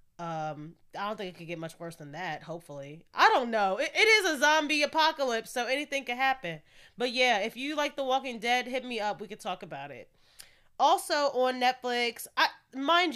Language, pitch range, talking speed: English, 180-265 Hz, 210 wpm